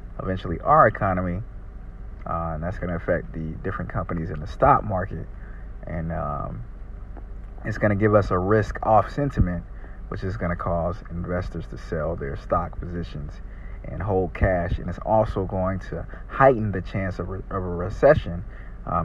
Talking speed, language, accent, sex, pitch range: 170 wpm, English, American, male, 85-100 Hz